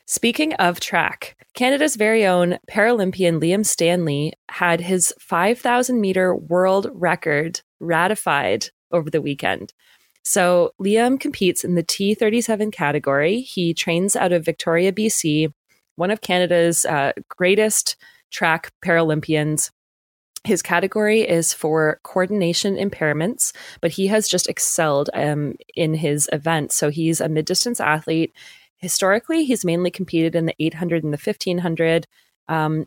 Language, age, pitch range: English, 20-39, 160-200 Hz